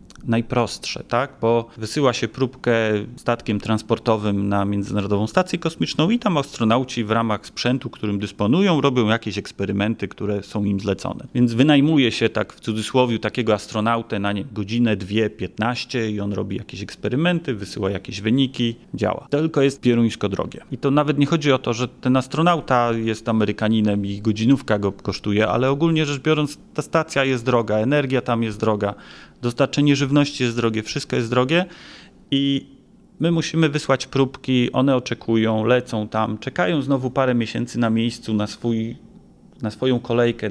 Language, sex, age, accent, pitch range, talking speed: Polish, male, 30-49, native, 110-135 Hz, 155 wpm